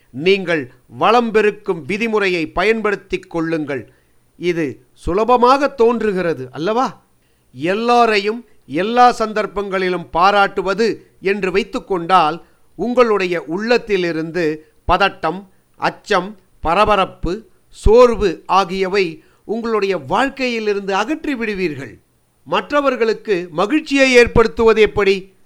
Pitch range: 180-230 Hz